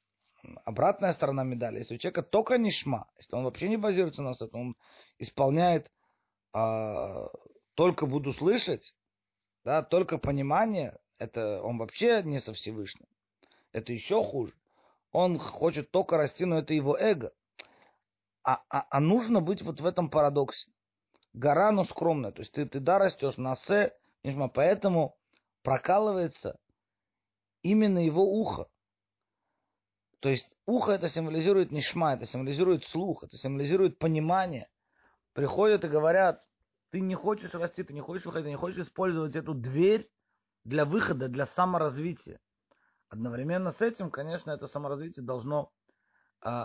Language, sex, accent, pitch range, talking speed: Russian, male, native, 125-175 Hz, 140 wpm